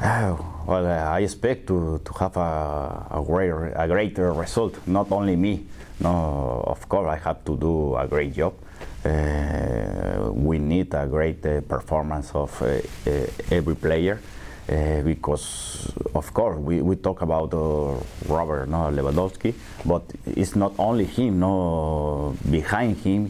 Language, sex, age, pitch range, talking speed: English, male, 30-49, 75-90 Hz, 150 wpm